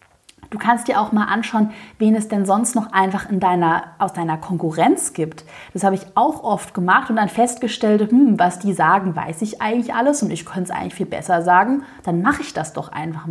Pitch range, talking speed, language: 195-235 Hz, 210 wpm, German